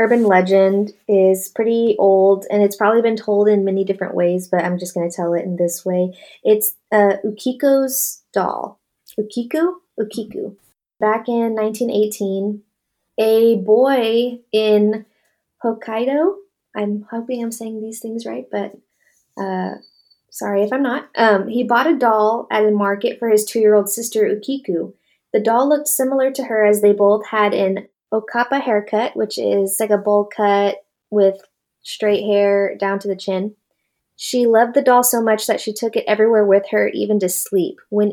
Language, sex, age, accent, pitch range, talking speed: English, female, 20-39, American, 200-230 Hz, 170 wpm